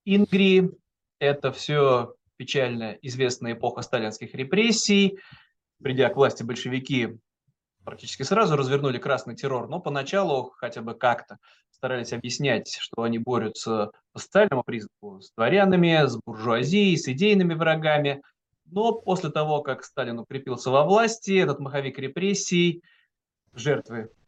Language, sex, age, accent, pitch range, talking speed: Russian, male, 20-39, native, 125-190 Hz, 125 wpm